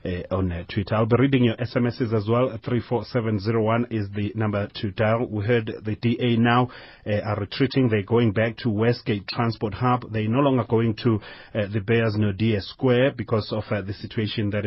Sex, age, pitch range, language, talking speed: male, 30-49, 100-120 Hz, English, 195 wpm